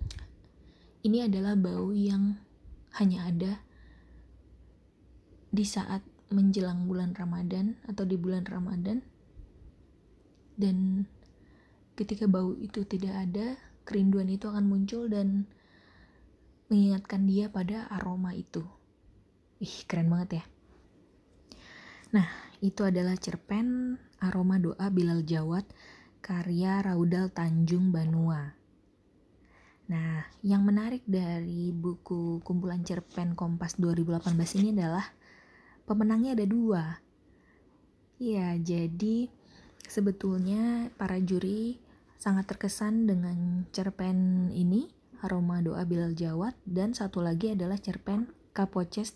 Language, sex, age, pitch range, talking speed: Indonesian, female, 20-39, 175-200 Hz, 95 wpm